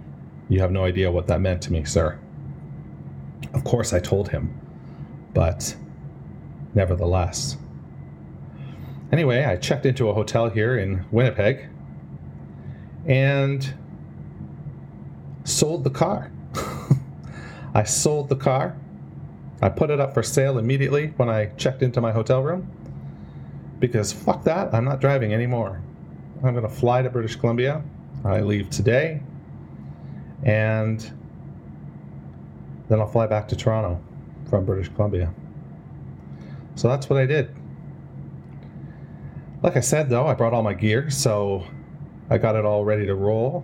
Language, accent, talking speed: English, American, 130 wpm